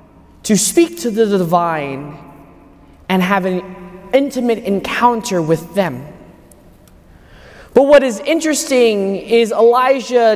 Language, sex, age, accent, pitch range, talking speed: English, male, 20-39, American, 170-240 Hz, 105 wpm